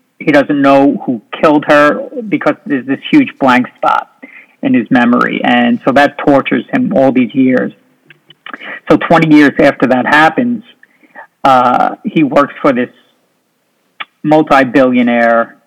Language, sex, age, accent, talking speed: English, male, 50-69, American, 135 wpm